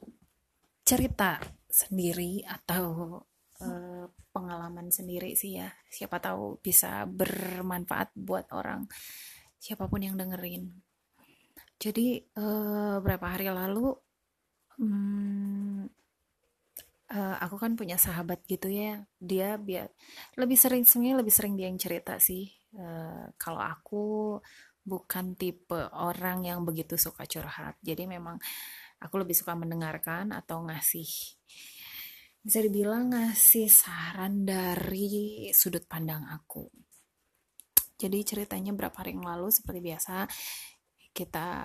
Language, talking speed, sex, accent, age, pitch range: Indonesian, 110 wpm, female, native, 20-39, 175-210 Hz